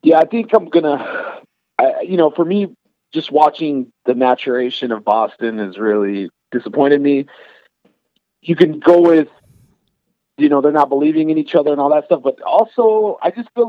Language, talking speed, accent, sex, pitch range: English, 180 wpm, American, male, 145-195 Hz